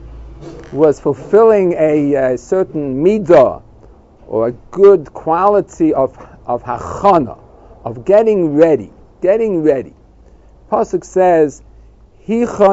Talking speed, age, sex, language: 90 wpm, 50-69, male, English